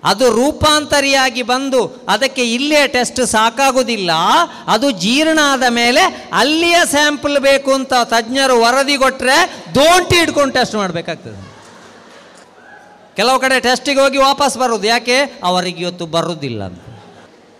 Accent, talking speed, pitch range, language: native, 110 wpm, 180-265 Hz, Kannada